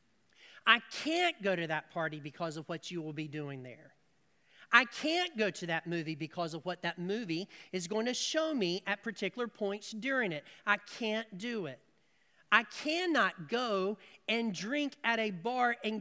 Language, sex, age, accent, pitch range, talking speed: English, male, 40-59, American, 160-225 Hz, 180 wpm